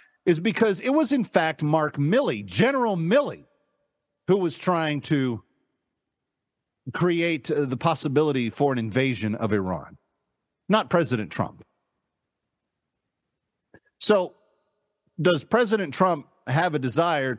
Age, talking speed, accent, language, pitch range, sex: 50-69, 110 wpm, American, English, 130-190 Hz, male